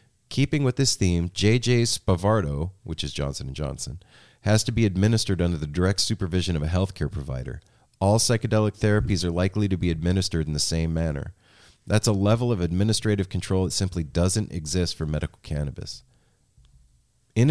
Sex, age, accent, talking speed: male, 30-49, American, 165 wpm